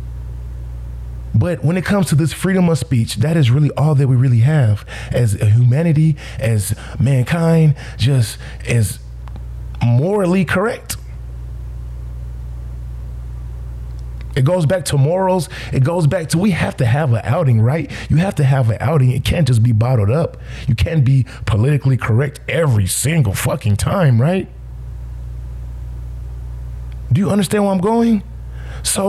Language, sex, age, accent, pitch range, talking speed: English, male, 20-39, American, 100-155 Hz, 150 wpm